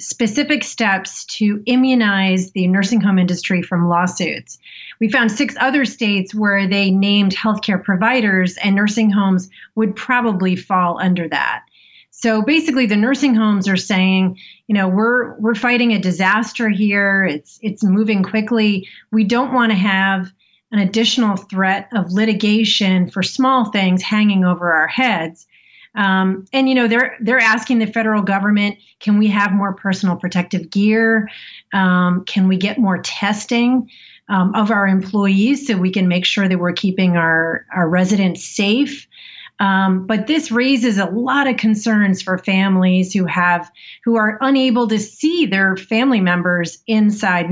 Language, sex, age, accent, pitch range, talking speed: English, female, 30-49, American, 190-225 Hz, 155 wpm